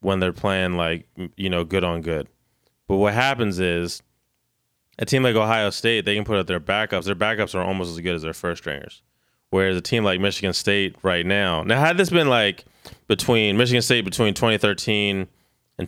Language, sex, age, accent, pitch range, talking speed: English, male, 20-39, American, 90-110 Hz, 200 wpm